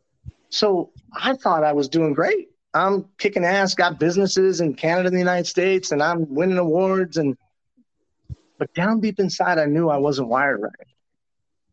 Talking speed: 170 wpm